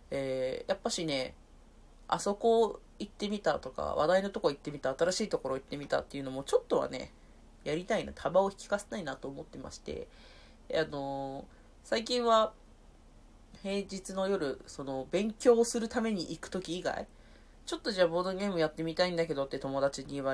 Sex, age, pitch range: female, 30-49, 145-245 Hz